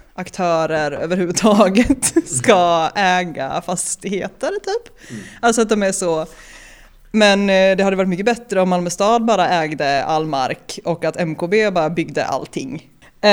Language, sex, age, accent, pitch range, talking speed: Swedish, female, 20-39, native, 165-215 Hz, 135 wpm